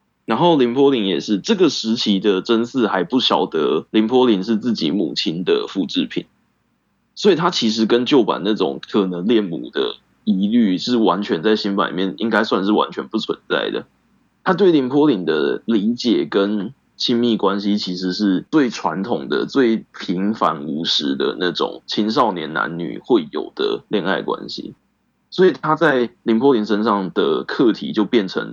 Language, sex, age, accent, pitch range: Chinese, male, 20-39, native, 100-150 Hz